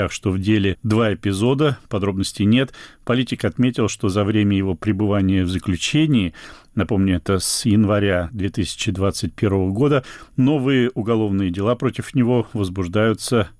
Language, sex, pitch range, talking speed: Russian, male, 100-125 Hz, 125 wpm